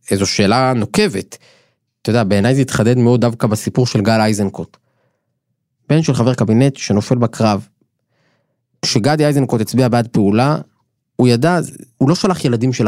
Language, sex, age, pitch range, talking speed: Hebrew, male, 20-39, 110-135 Hz, 150 wpm